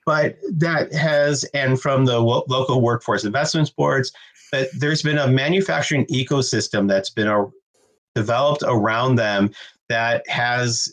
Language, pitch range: English, 100-130 Hz